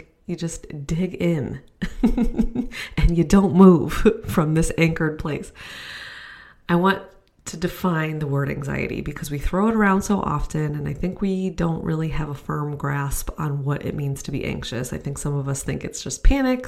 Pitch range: 150-195 Hz